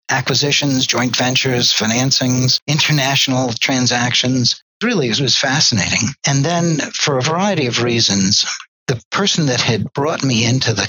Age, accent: 60-79, American